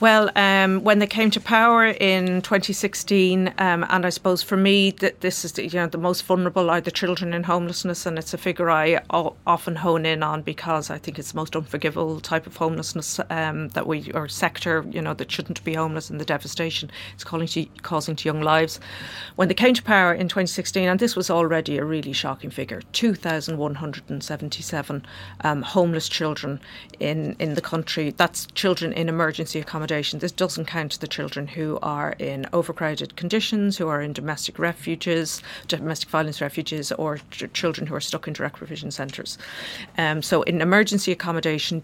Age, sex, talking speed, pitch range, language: 40-59, female, 185 wpm, 155-185 Hz, English